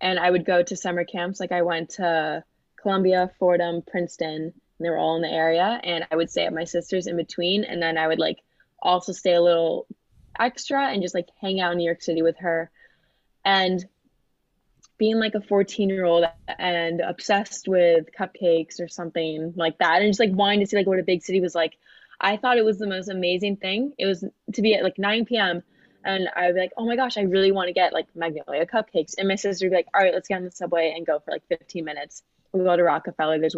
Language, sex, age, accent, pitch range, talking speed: English, female, 20-39, American, 170-200 Hz, 235 wpm